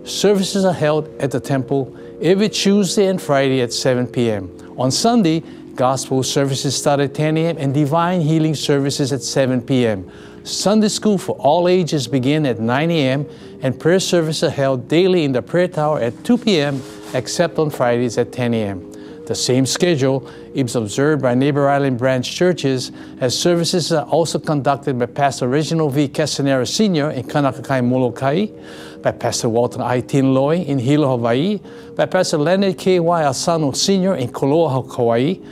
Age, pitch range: 60-79, 125-165 Hz